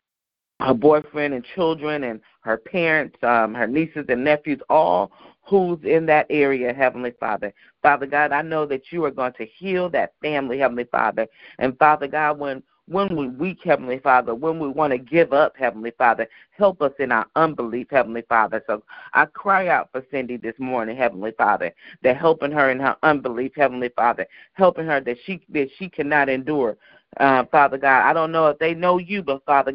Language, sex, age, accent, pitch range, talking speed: English, female, 40-59, American, 120-150 Hz, 190 wpm